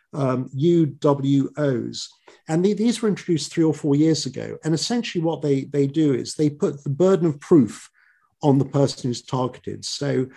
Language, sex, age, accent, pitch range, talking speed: English, male, 50-69, British, 130-160 Hz, 175 wpm